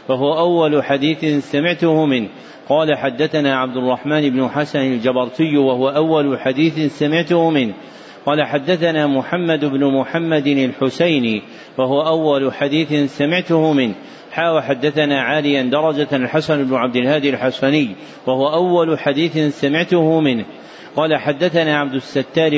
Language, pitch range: Arabic, 135-160 Hz